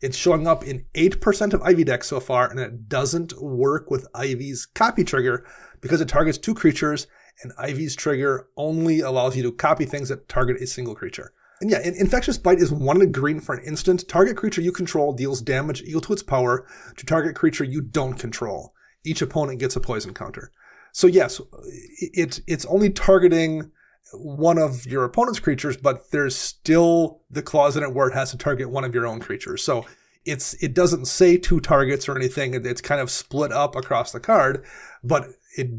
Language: English